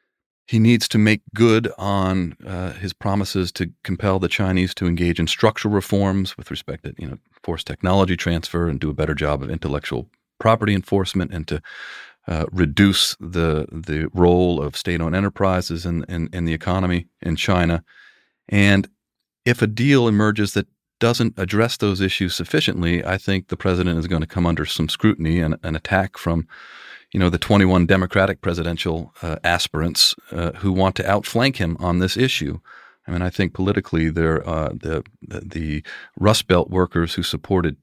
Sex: male